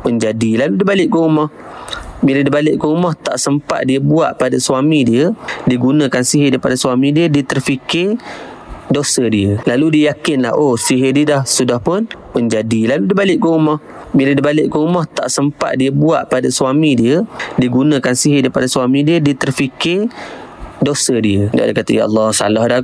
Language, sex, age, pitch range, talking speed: Malay, male, 20-39, 130-170 Hz, 190 wpm